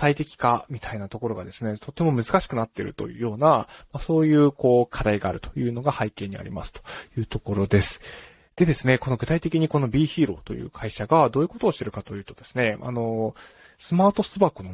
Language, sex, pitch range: Japanese, male, 105-150 Hz